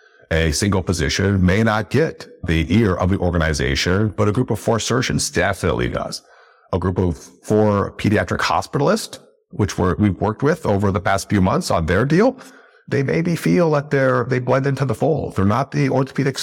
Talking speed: 190 wpm